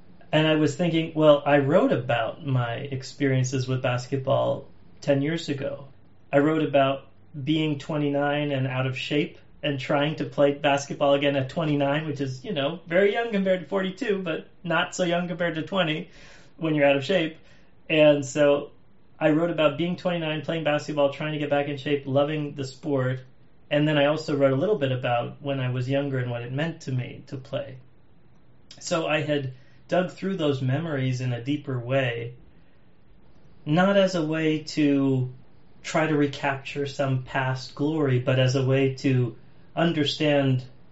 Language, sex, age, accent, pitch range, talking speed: English, male, 30-49, American, 135-155 Hz, 175 wpm